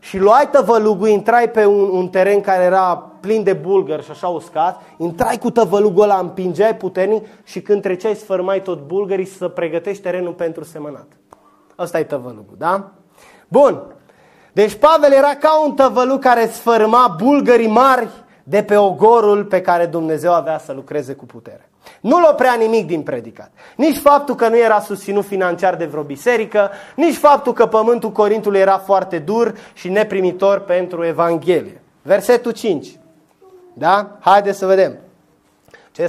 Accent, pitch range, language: native, 180-230 Hz, Romanian